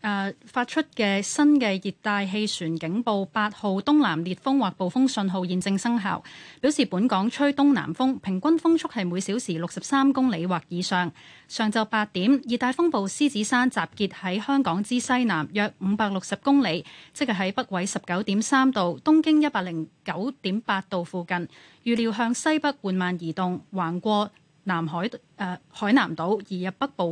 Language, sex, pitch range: Chinese, female, 185-255 Hz